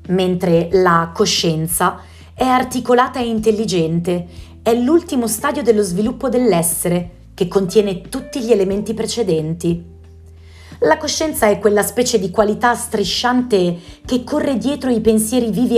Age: 30-49